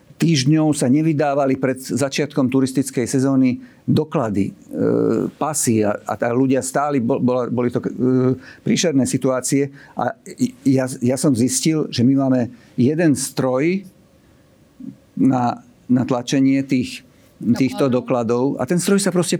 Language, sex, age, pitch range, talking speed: Slovak, male, 50-69, 120-145 Hz, 125 wpm